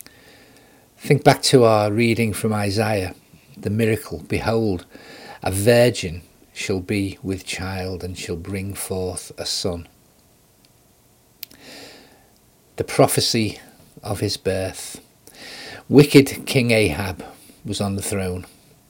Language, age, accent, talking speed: English, 40-59, British, 110 wpm